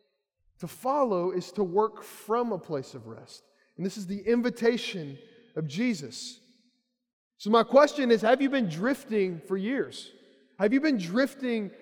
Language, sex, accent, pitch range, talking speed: English, male, American, 200-260 Hz, 155 wpm